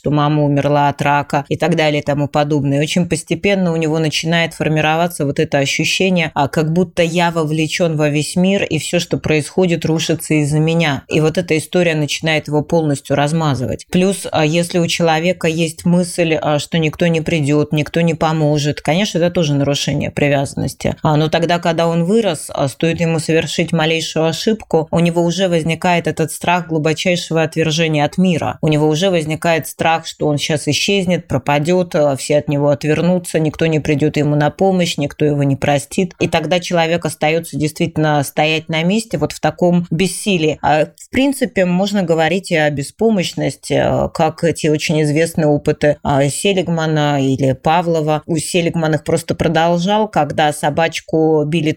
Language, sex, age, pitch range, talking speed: Russian, female, 20-39, 150-175 Hz, 160 wpm